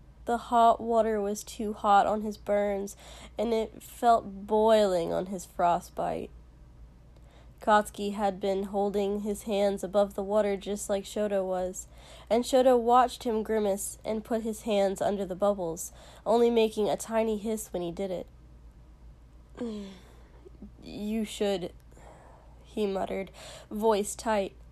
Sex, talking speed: female, 135 wpm